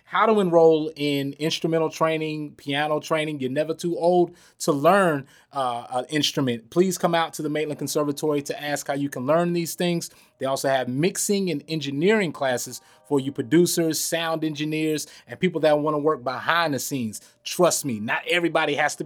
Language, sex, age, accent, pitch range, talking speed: English, male, 30-49, American, 145-180 Hz, 185 wpm